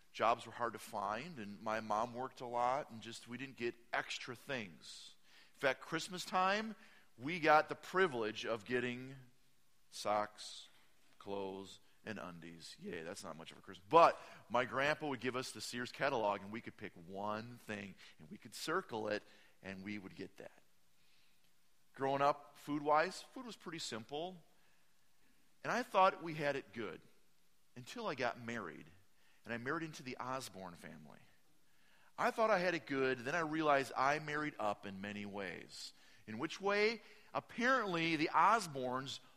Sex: male